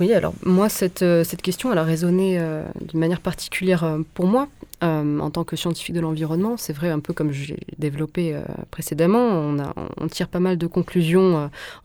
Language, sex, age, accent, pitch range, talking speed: French, female, 20-39, French, 155-175 Hz, 215 wpm